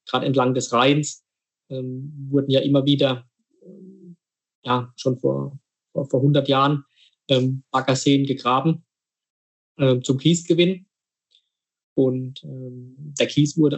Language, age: German, 20-39